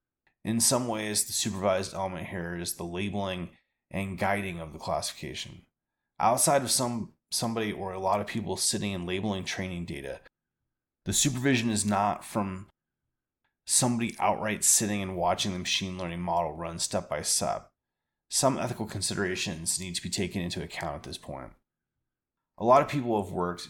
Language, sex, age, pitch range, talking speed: English, male, 30-49, 90-105 Hz, 165 wpm